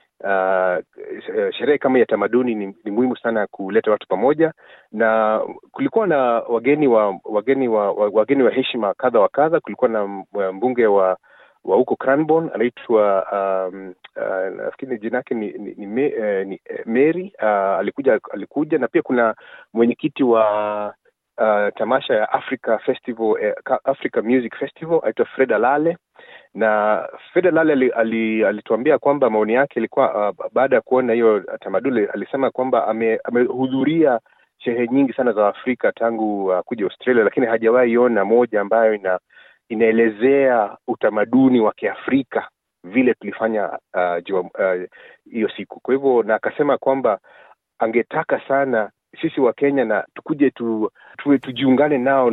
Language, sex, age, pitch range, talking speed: Swahili, male, 30-49, 105-135 Hz, 140 wpm